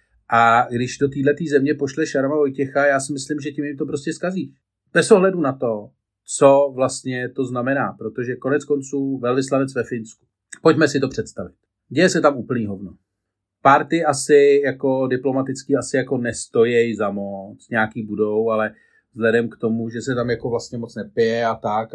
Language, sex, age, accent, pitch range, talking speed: Czech, male, 40-59, native, 110-140 Hz, 175 wpm